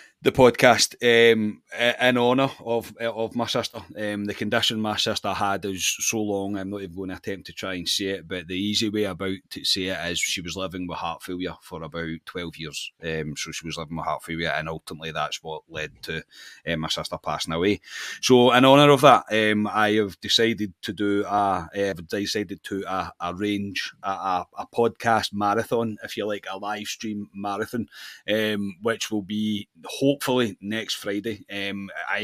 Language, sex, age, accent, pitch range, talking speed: English, male, 30-49, British, 95-110 Hz, 195 wpm